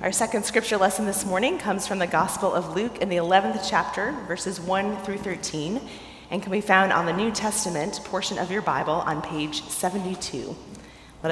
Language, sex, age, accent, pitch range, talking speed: English, female, 30-49, American, 175-225 Hz, 190 wpm